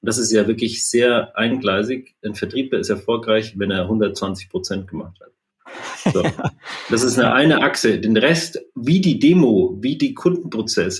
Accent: German